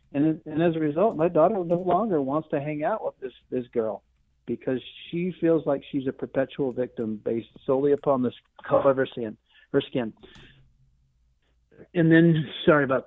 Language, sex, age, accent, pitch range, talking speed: English, male, 50-69, American, 125-165 Hz, 170 wpm